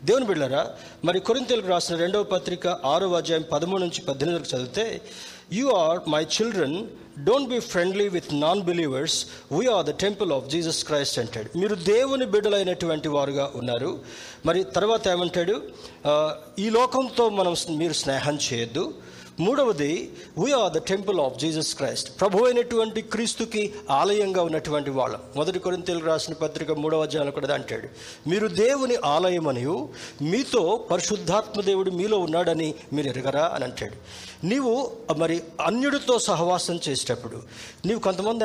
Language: Telugu